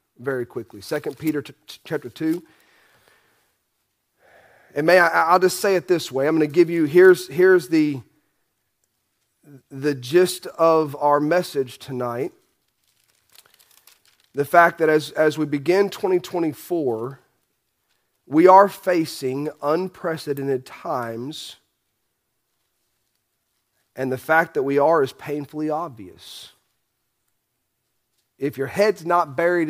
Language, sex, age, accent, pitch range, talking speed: English, male, 40-59, American, 130-175 Hz, 115 wpm